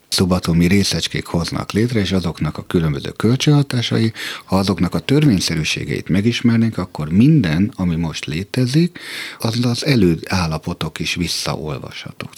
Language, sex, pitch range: Hungarian, male, 80-115 Hz